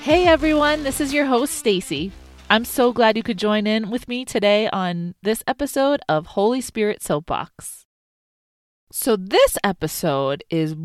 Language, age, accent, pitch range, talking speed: English, 20-39, American, 165-230 Hz, 155 wpm